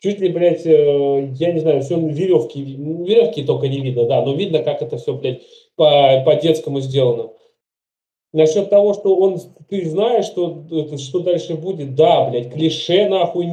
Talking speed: 155 wpm